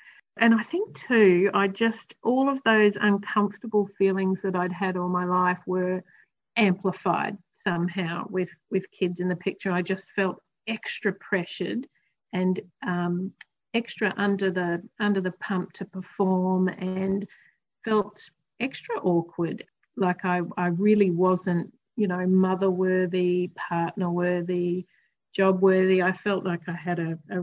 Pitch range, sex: 175-205 Hz, female